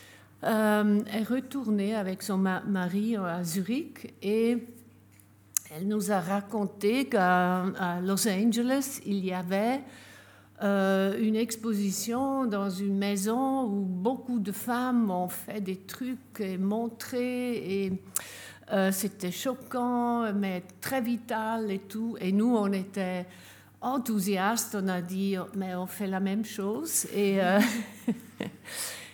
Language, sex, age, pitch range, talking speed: English, female, 60-79, 190-230 Hz, 125 wpm